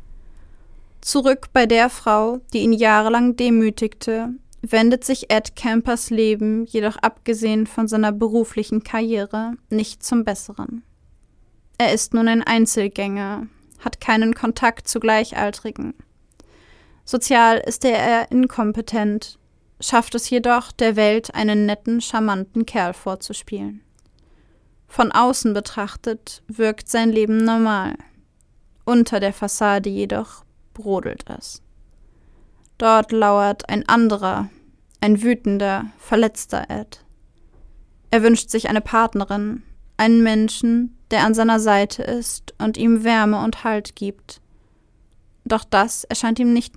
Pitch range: 210-235 Hz